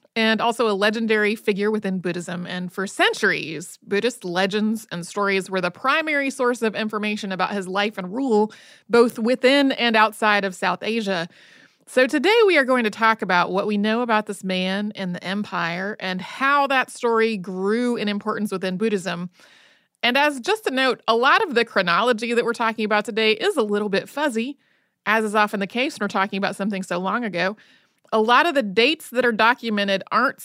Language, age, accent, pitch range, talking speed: English, 30-49, American, 195-240 Hz, 195 wpm